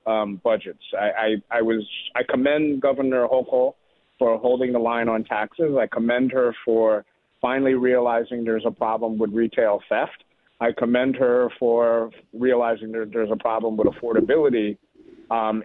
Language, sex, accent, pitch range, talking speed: English, male, American, 110-135 Hz, 155 wpm